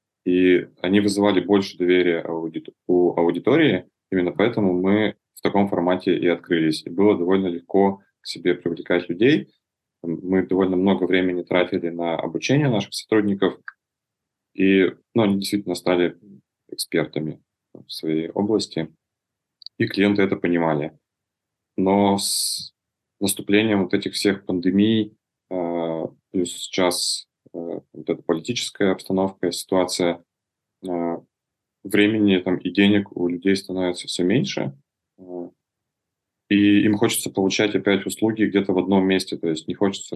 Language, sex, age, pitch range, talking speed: Russian, male, 20-39, 90-100 Hz, 125 wpm